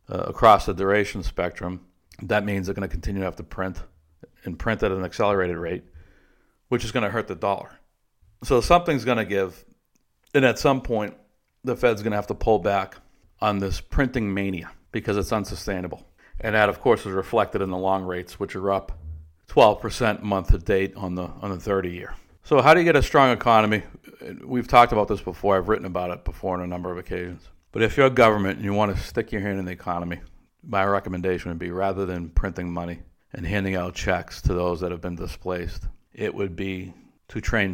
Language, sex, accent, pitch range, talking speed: English, male, American, 90-100 Hz, 215 wpm